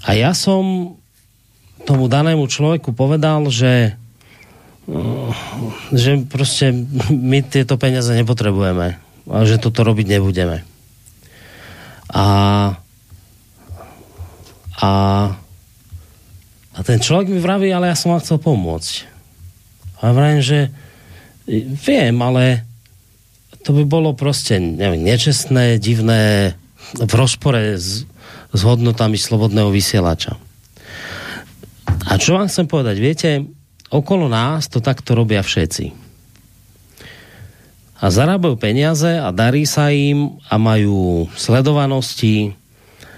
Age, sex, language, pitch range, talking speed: 40-59, male, Slovak, 100-135 Hz, 100 wpm